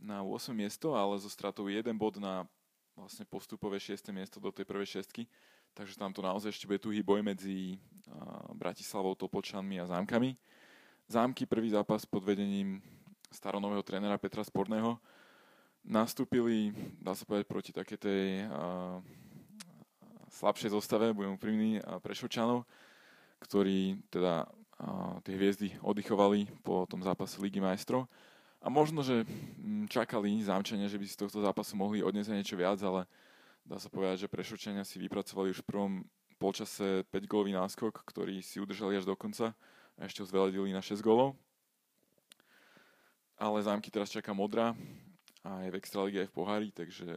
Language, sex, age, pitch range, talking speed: Slovak, male, 20-39, 95-110 Hz, 155 wpm